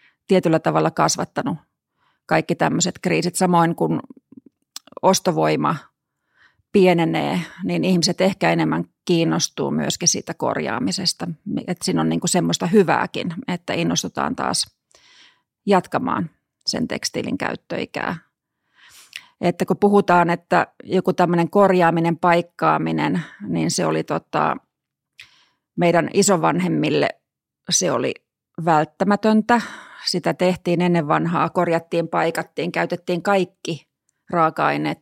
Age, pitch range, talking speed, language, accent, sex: 30-49, 165-195 Hz, 100 wpm, Finnish, native, female